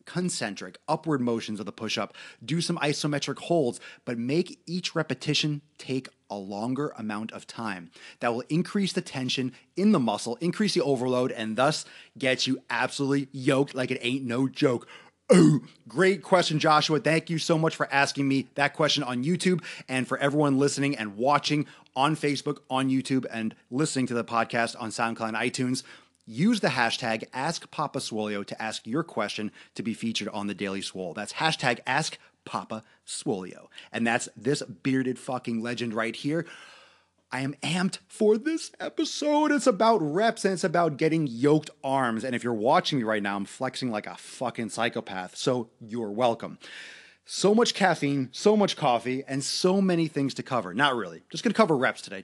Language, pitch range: English, 120-165 Hz